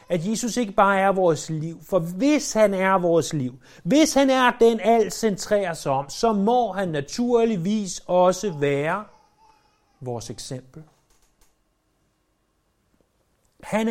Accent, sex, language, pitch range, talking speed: native, male, Danish, 140-225 Hz, 130 wpm